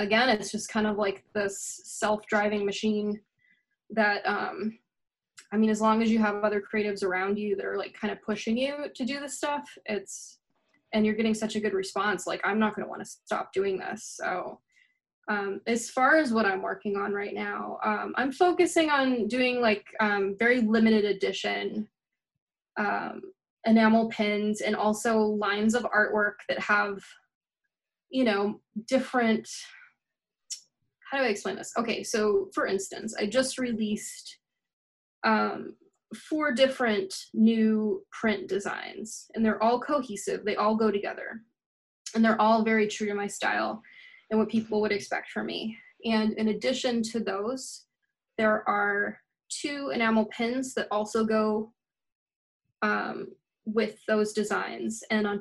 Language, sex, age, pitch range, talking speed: English, female, 10-29, 210-245 Hz, 155 wpm